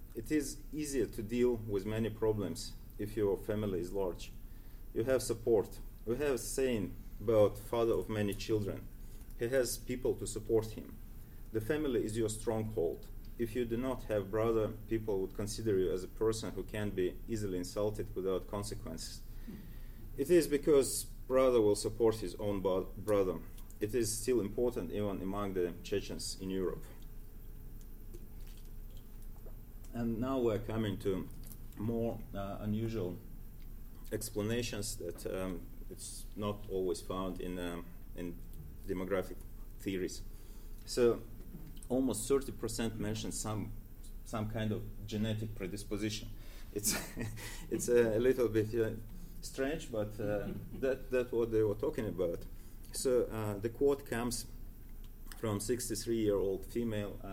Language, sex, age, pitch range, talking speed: English, male, 30-49, 100-115 Hz, 135 wpm